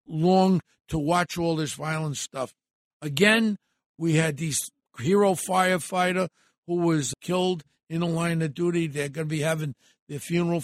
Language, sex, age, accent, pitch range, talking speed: English, male, 60-79, American, 135-175 Hz, 160 wpm